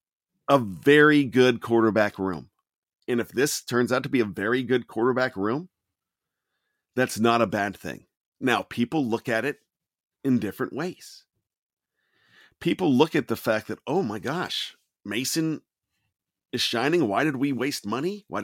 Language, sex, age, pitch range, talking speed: English, male, 40-59, 125-180 Hz, 155 wpm